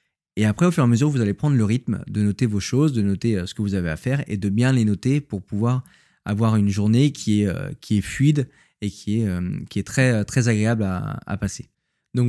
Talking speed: 250 wpm